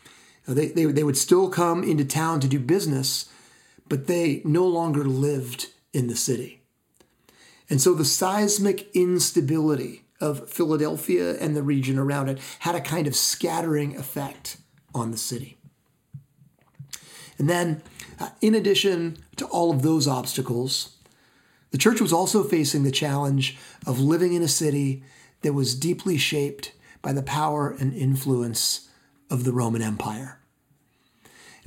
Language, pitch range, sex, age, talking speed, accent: English, 130-165 Hz, male, 40-59, 145 wpm, American